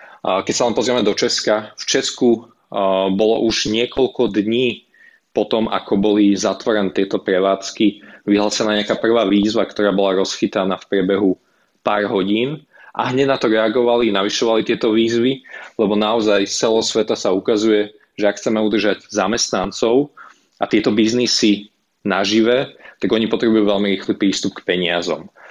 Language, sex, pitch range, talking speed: Slovak, male, 100-115 Hz, 145 wpm